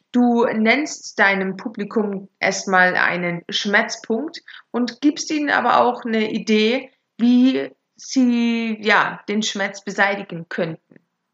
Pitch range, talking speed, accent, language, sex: 210-275 Hz, 110 wpm, German, German, female